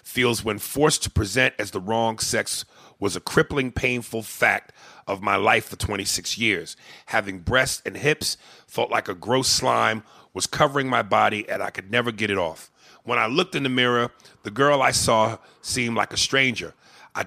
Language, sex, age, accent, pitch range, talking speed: English, male, 40-59, American, 110-135 Hz, 190 wpm